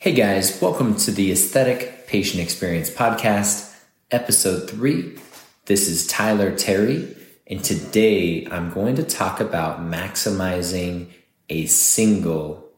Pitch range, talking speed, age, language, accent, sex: 90-110 Hz, 115 wpm, 20-39, English, American, male